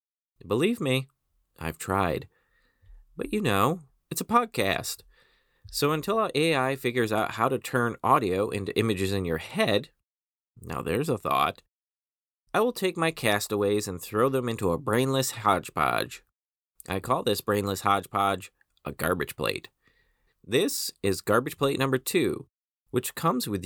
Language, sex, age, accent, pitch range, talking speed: English, male, 30-49, American, 90-145 Hz, 145 wpm